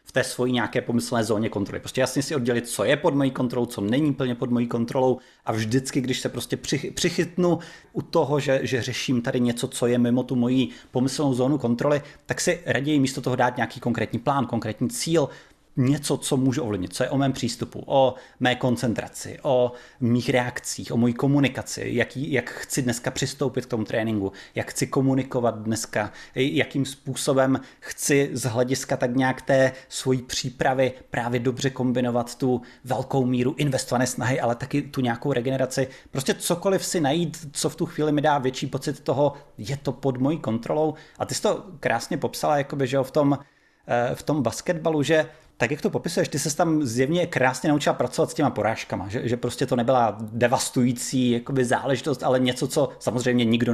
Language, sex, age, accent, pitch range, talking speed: Czech, male, 30-49, native, 125-150 Hz, 185 wpm